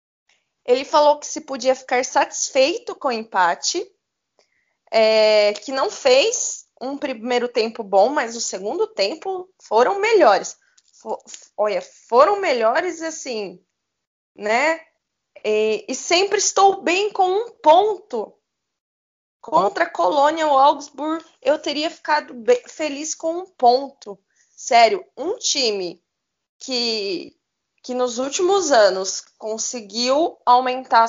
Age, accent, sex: 20-39, Brazilian, female